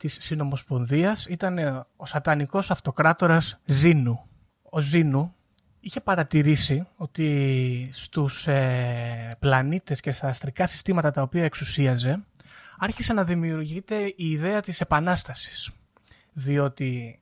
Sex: male